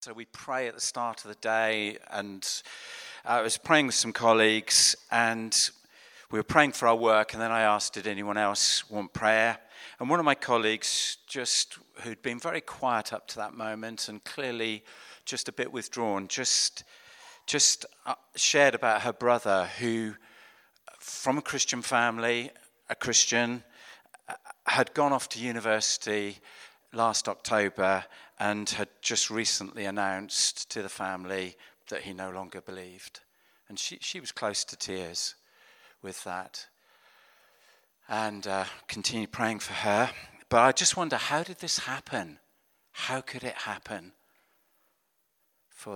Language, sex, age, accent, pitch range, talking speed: English, male, 50-69, British, 105-125 Hz, 150 wpm